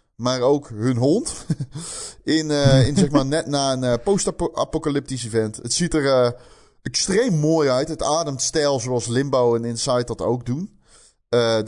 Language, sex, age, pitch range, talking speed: Dutch, male, 20-39, 110-135 Hz, 170 wpm